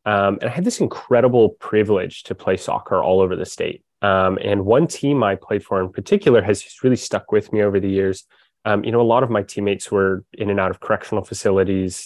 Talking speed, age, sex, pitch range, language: 230 wpm, 20-39, male, 95-110 Hz, English